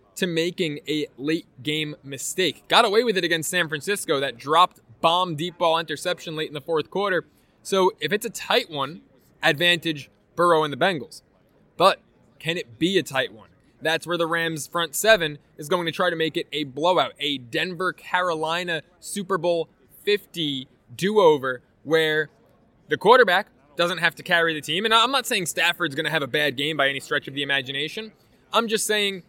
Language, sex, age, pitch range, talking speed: English, male, 20-39, 150-185 Hz, 185 wpm